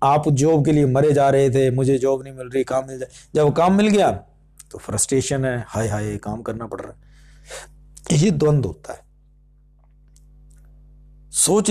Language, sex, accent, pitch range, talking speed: Hindi, male, native, 125-150 Hz, 170 wpm